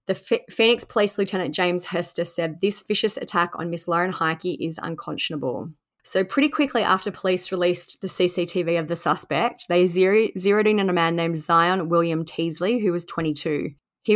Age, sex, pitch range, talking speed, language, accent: 20-39, female, 170-195 Hz, 175 wpm, English, Australian